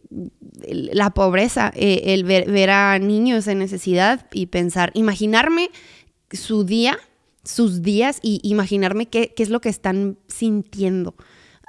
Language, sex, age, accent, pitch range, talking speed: Spanish, female, 20-39, Mexican, 190-225 Hz, 130 wpm